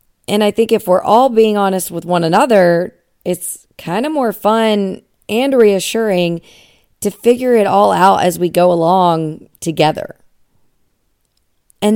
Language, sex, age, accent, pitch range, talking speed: English, female, 40-59, American, 165-210 Hz, 145 wpm